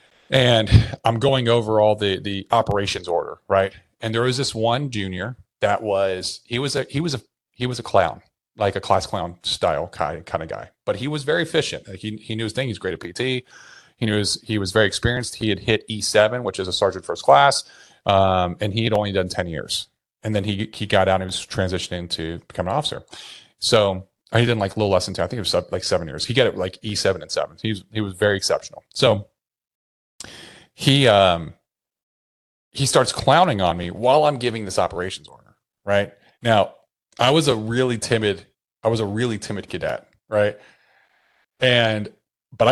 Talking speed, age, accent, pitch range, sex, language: 215 wpm, 30-49, American, 95-120 Hz, male, English